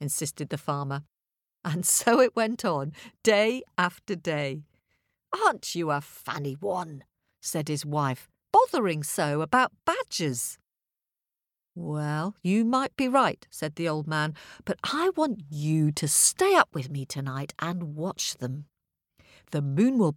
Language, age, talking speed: English, 50-69, 145 wpm